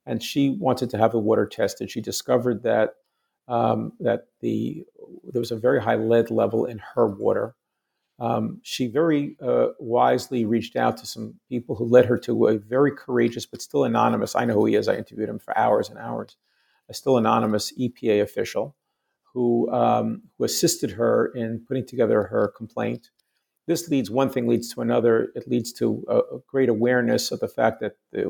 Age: 50-69